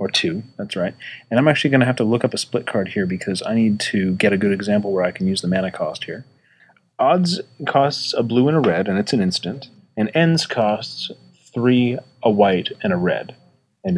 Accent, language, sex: American, English, male